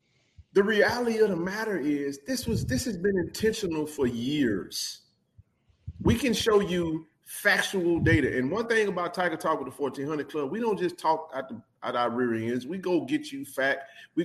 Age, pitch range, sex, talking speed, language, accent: 40-59, 135-210 Hz, male, 200 wpm, English, American